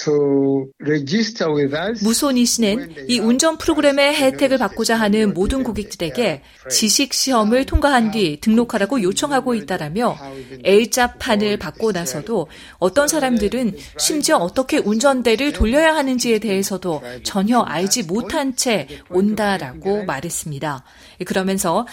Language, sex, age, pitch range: Korean, female, 40-59, 190-265 Hz